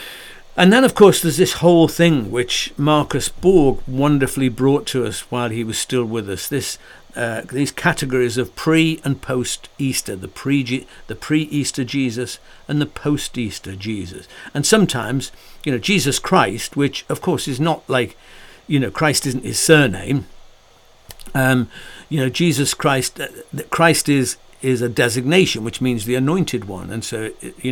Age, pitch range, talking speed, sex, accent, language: 60-79, 120-145 Hz, 175 wpm, male, British, English